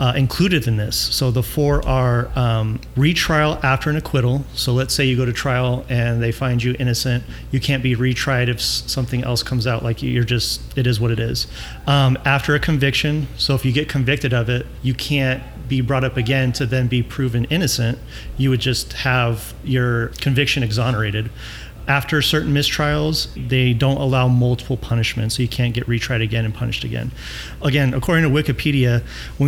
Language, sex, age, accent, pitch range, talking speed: English, male, 40-59, American, 120-140 Hz, 190 wpm